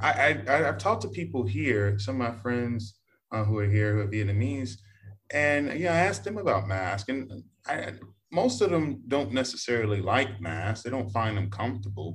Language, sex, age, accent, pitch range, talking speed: English, male, 20-39, American, 100-120 Hz, 200 wpm